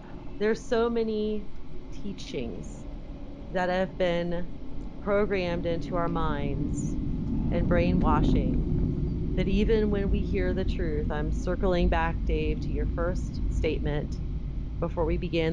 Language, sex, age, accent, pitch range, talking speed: English, female, 30-49, American, 160-205 Hz, 120 wpm